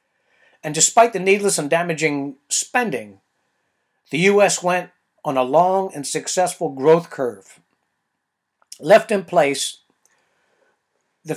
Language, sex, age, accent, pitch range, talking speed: English, male, 60-79, American, 130-180 Hz, 110 wpm